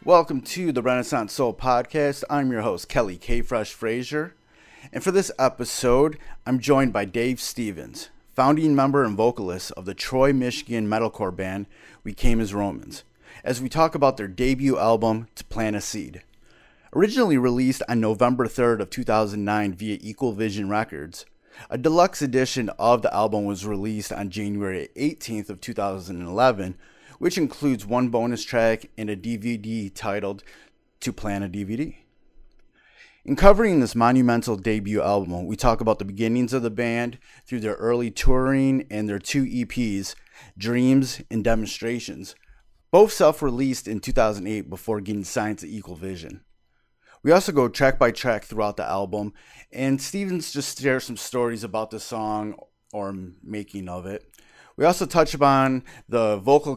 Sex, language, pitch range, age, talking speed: male, English, 105-130 Hz, 30-49, 155 wpm